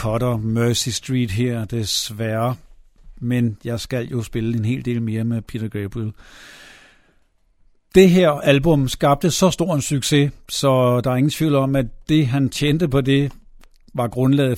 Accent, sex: native, male